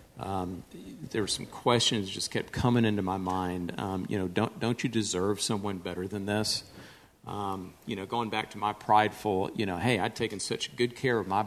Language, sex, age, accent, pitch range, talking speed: English, male, 50-69, American, 100-120 Hz, 210 wpm